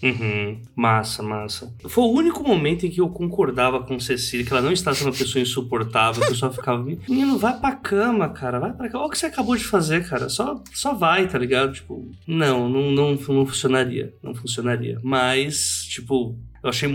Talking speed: 205 wpm